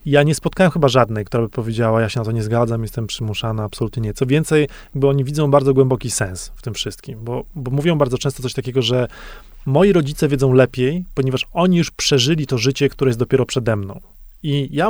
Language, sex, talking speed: Polish, male, 220 wpm